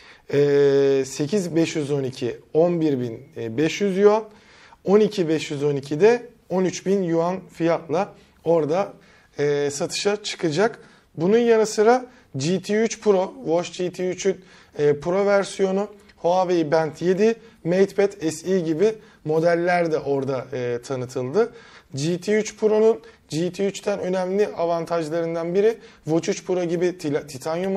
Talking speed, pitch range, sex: 90 wpm, 145-200 Hz, male